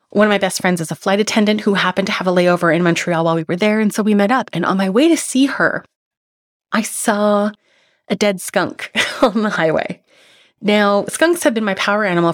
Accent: American